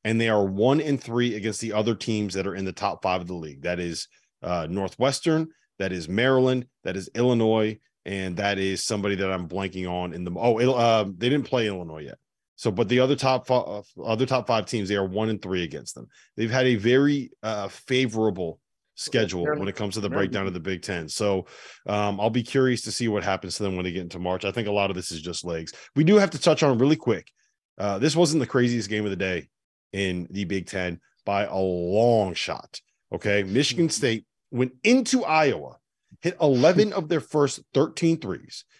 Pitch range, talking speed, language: 95-130 Hz, 225 wpm, English